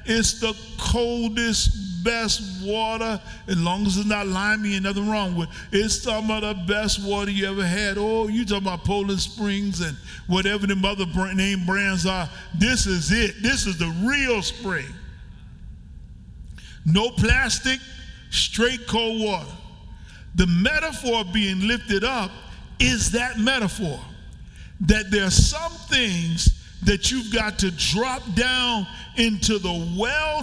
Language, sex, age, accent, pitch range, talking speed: English, male, 50-69, American, 180-220 Hz, 145 wpm